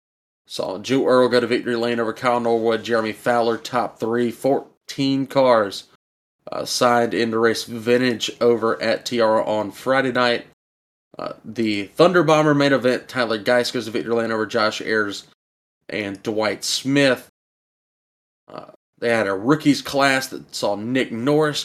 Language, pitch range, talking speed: English, 115-135 Hz, 155 wpm